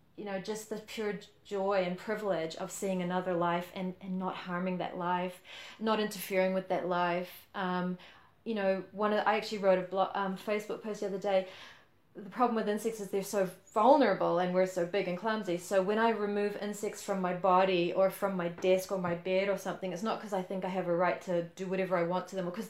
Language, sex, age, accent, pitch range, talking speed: English, female, 30-49, Australian, 185-215 Hz, 235 wpm